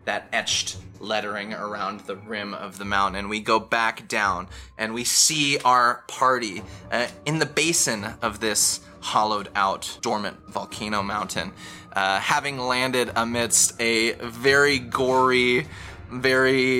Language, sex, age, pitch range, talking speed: English, male, 20-39, 100-125 Hz, 135 wpm